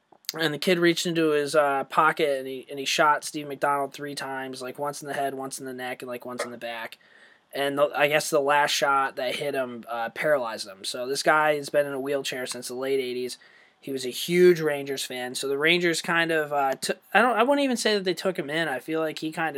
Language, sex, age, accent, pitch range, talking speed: English, male, 20-39, American, 135-155 Hz, 255 wpm